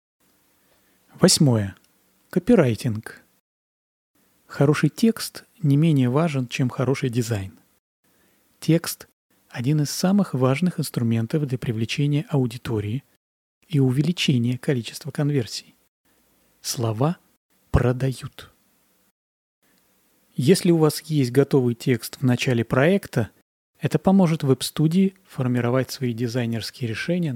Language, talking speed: Russian, 90 wpm